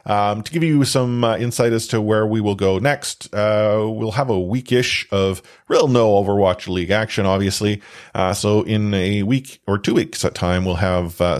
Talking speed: 205 wpm